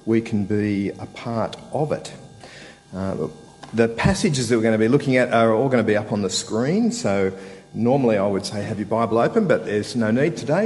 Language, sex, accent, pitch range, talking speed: English, male, Australian, 100-135 Hz, 225 wpm